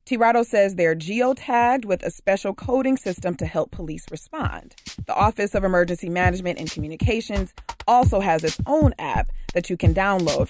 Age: 30-49